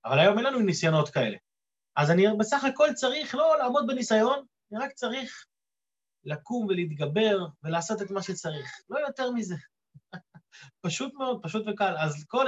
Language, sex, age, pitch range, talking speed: Hebrew, male, 30-49, 155-220 Hz, 155 wpm